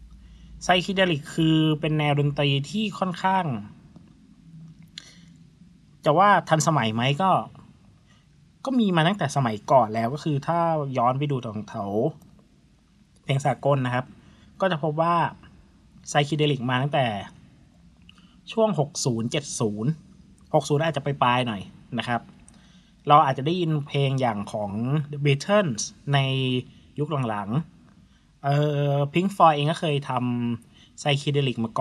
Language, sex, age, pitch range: Thai, male, 20-39, 120-170 Hz